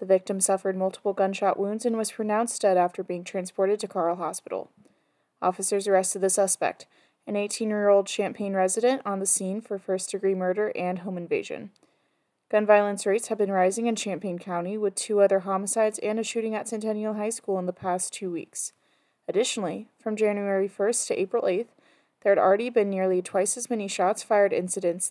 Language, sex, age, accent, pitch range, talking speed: English, female, 20-39, American, 185-220 Hz, 180 wpm